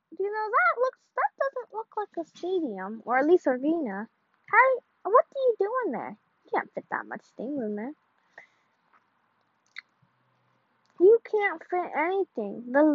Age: 10-29